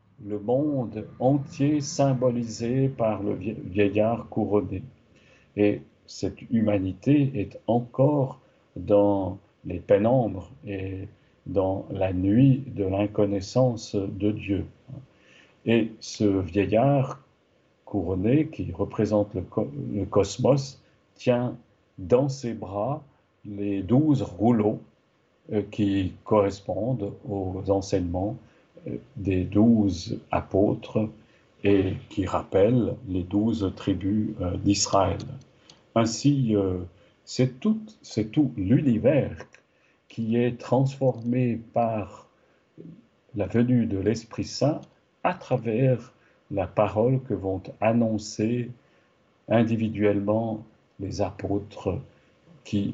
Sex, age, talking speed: male, 50-69, 90 wpm